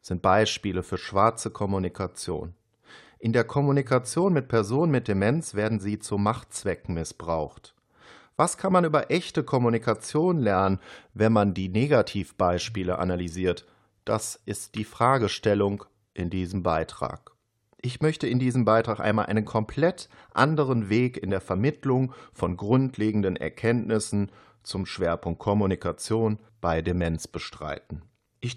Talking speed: 125 wpm